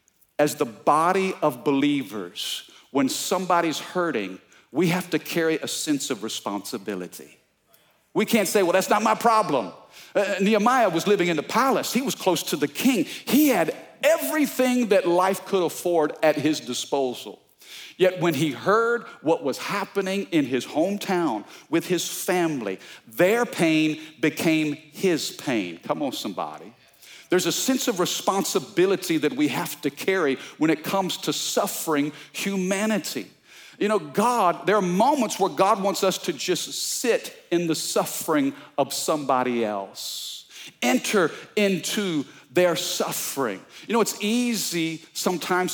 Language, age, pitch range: English, 50-69, 150-200 Hz